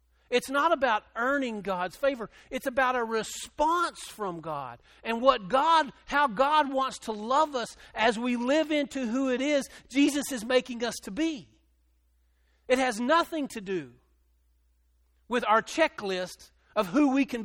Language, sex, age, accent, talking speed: English, male, 50-69, American, 160 wpm